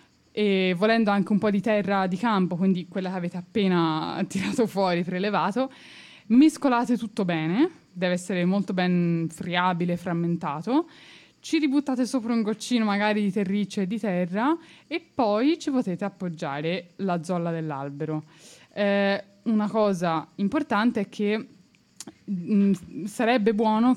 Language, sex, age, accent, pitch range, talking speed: Italian, female, 20-39, native, 175-210 Hz, 130 wpm